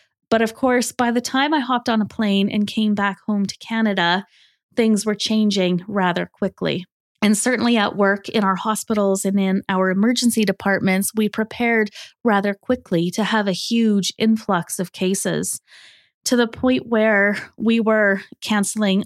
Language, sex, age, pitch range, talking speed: English, female, 20-39, 195-225 Hz, 165 wpm